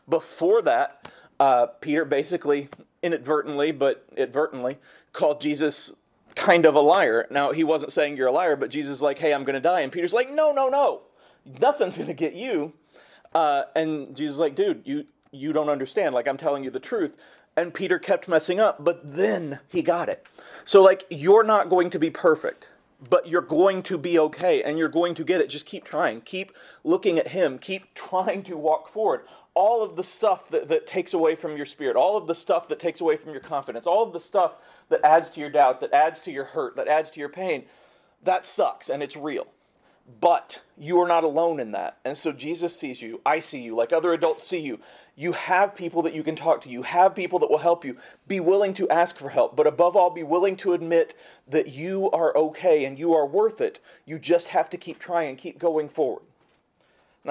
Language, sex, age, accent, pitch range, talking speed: English, male, 30-49, American, 155-195 Hz, 220 wpm